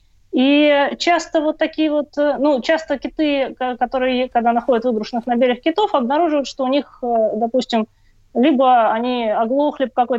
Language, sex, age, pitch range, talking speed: Russian, female, 20-39, 235-300 Hz, 145 wpm